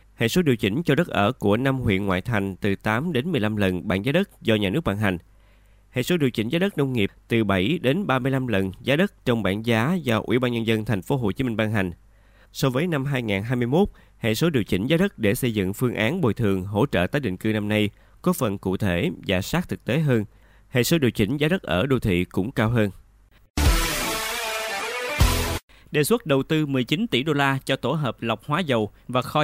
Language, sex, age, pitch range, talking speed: Vietnamese, male, 20-39, 105-140 Hz, 235 wpm